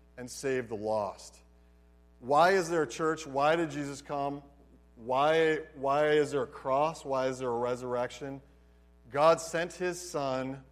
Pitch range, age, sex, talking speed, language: 115-155 Hz, 40-59, male, 155 wpm, English